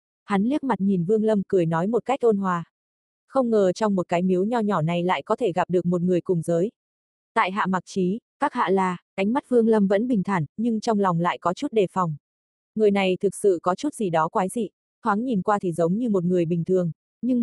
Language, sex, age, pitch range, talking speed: Vietnamese, female, 20-39, 180-220 Hz, 250 wpm